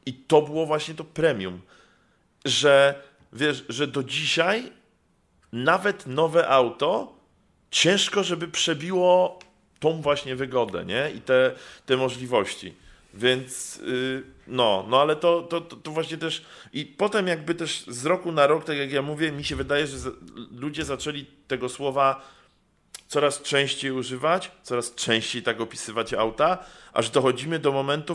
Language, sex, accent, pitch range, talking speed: Polish, male, native, 130-170 Hz, 145 wpm